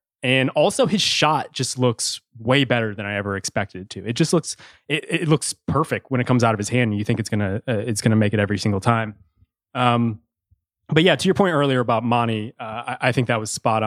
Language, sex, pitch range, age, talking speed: English, male, 110-135 Hz, 20-39, 240 wpm